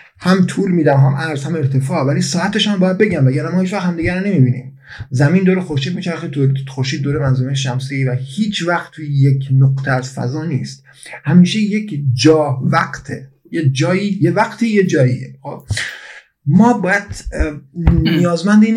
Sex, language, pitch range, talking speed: male, Persian, 135-175 Hz, 160 wpm